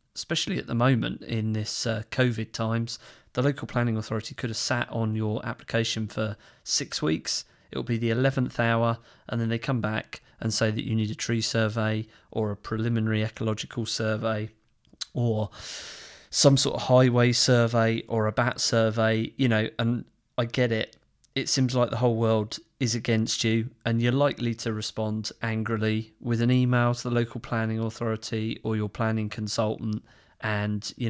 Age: 30-49